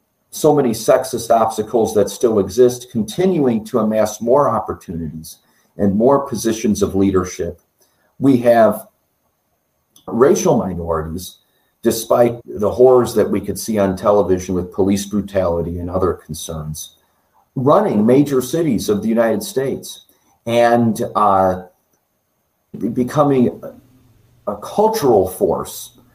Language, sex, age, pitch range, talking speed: English, male, 40-59, 100-120 Hz, 110 wpm